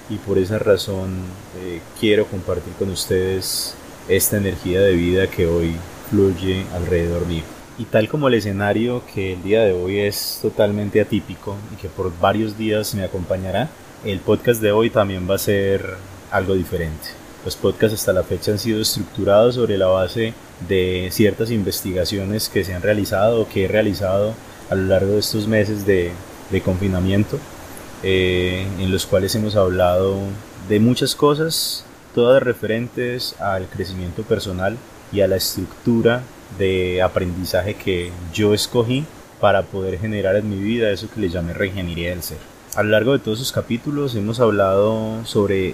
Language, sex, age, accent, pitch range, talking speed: Spanish, male, 30-49, Colombian, 95-115 Hz, 165 wpm